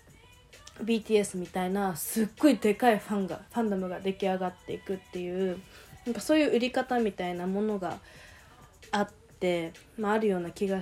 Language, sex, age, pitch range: Japanese, female, 20-39, 185-260 Hz